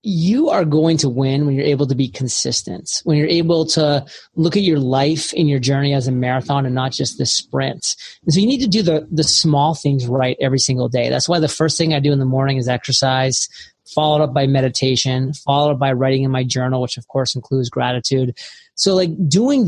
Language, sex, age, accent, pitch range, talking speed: English, male, 30-49, American, 135-160 Hz, 230 wpm